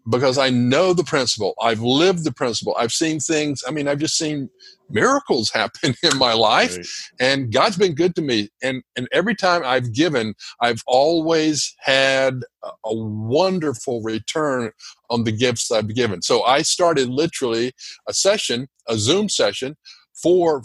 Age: 50-69